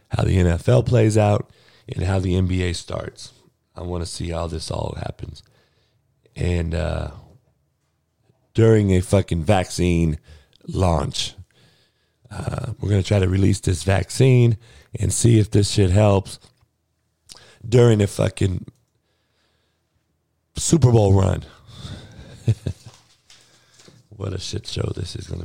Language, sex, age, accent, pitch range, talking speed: English, male, 40-59, American, 90-115 Hz, 125 wpm